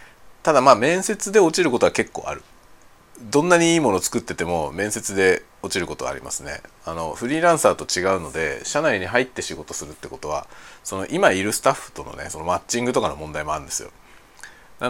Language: Japanese